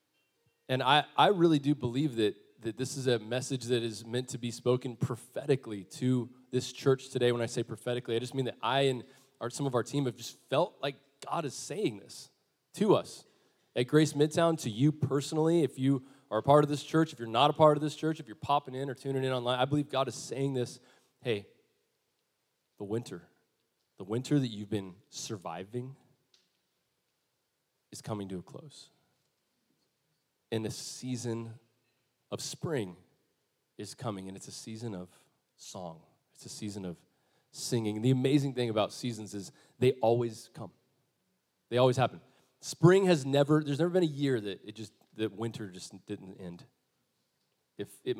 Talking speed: 180 wpm